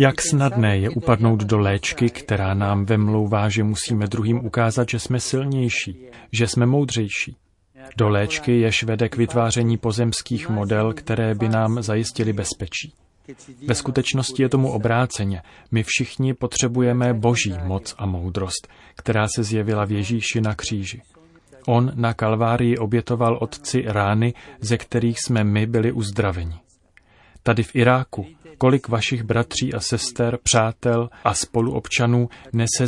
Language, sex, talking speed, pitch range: Czech, male, 135 wpm, 105-125 Hz